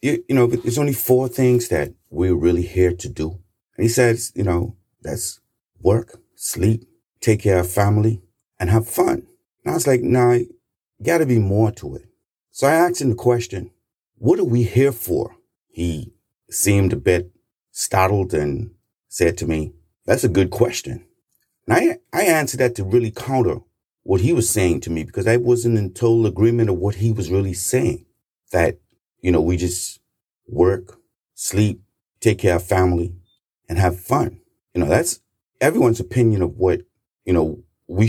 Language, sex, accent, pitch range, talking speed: English, male, American, 95-120 Hz, 180 wpm